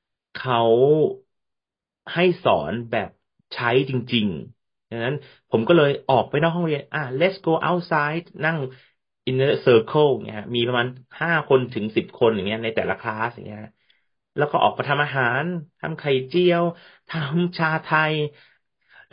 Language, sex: Thai, male